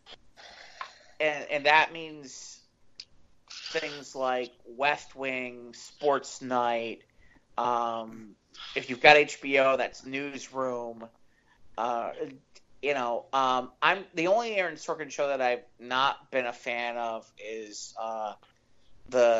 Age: 30-49